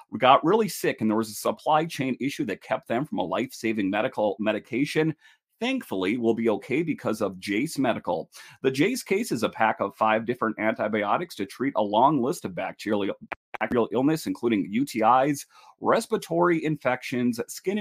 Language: English